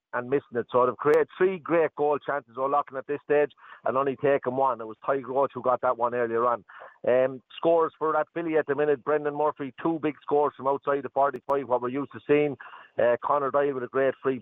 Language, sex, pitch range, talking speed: English, male, 130-150 Hz, 235 wpm